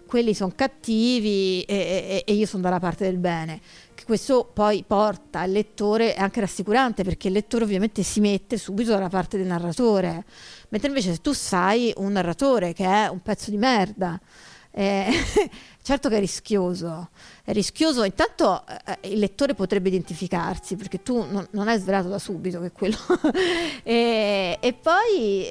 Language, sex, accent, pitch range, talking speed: Italian, female, native, 185-230 Hz, 165 wpm